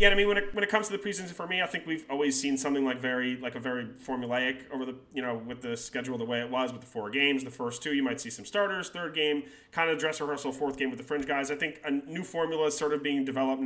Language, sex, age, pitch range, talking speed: English, male, 30-49, 130-165 Hz, 305 wpm